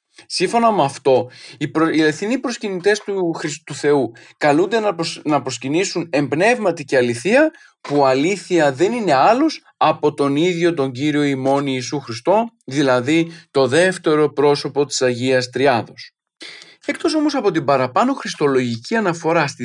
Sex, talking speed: male, 125 wpm